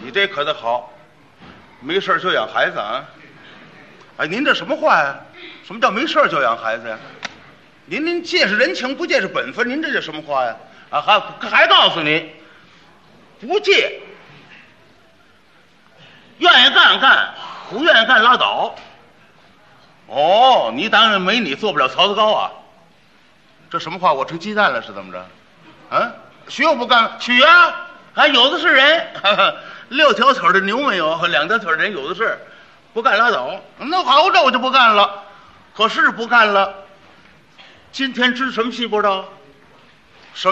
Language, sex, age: Chinese, male, 50-69